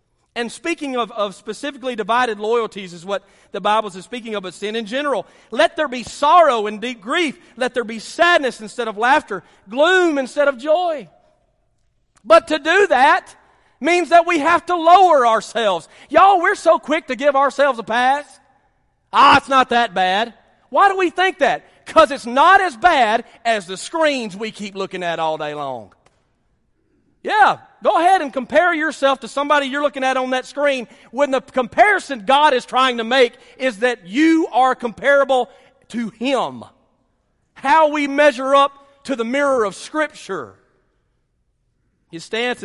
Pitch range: 215-290 Hz